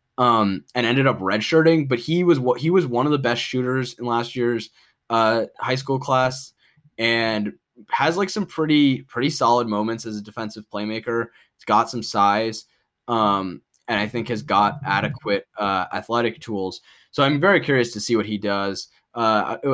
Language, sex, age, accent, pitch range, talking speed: English, male, 10-29, American, 105-125 Hz, 180 wpm